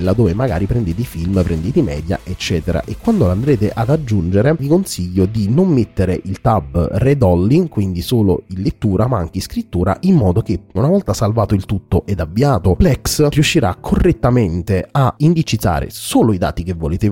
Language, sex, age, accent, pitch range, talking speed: Italian, male, 30-49, native, 95-130 Hz, 170 wpm